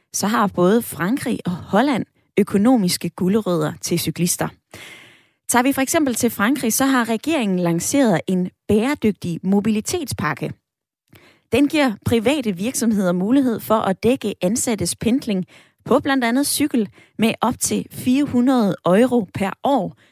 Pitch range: 180-250 Hz